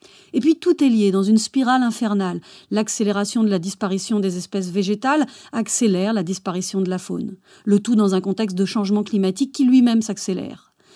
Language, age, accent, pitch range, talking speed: French, 40-59, French, 195-245 Hz, 180 wpm